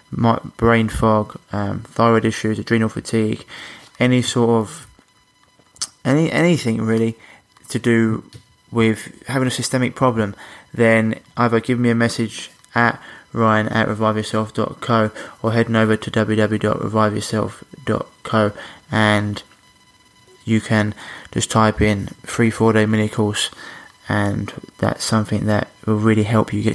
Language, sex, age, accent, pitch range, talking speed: English, male, 20-39, British, 110-120 Hz, 125 wpm